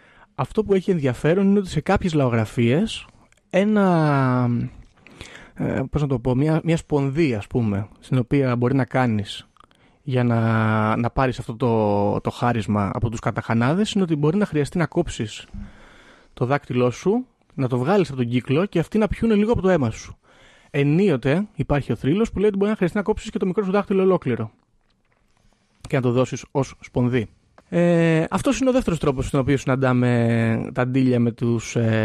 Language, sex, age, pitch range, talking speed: Greek, male, 30-49, 120-175 Hz, 180 wpm